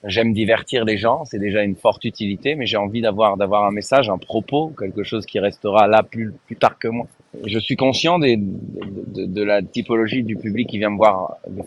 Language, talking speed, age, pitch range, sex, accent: French, 225 wpm, 30-49, 105-130 Hz, male, French